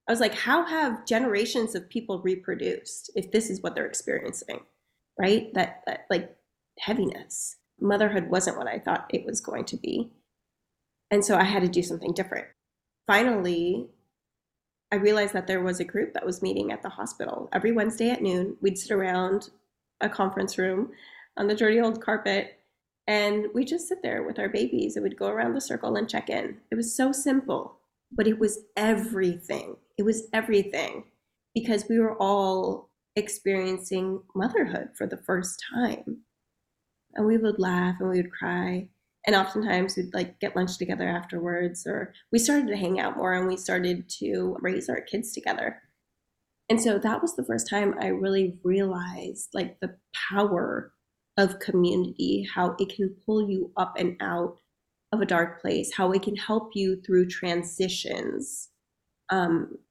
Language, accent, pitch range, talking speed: English, American, 185-220 Hz, 170 wpm